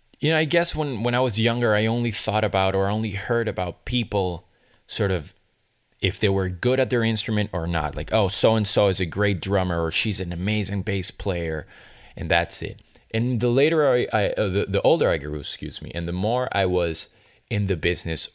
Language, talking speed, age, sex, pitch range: English, 215 wpm, 30-49, male, 90-115 Hz